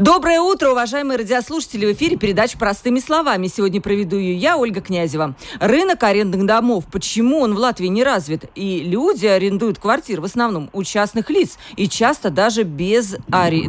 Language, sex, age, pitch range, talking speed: Russian, female, 40-59, 195-250 Hz, 165 wpm